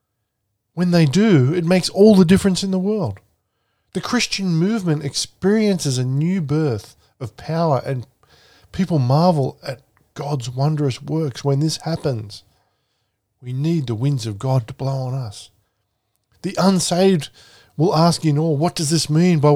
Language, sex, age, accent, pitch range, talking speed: English, male, 20-39, Australian, 115-155 Hz, 160 wpm